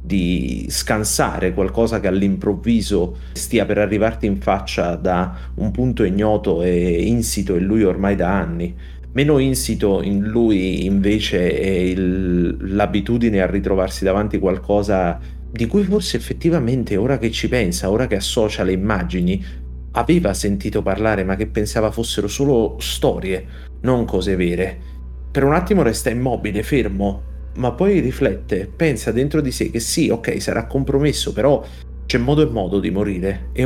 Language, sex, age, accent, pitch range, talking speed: Italian, male, 30-49, native, 95-115 Hz, 150 wpm